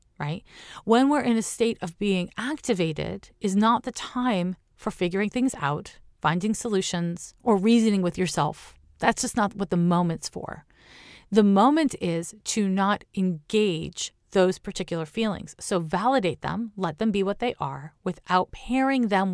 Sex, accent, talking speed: female, American, 160 wpm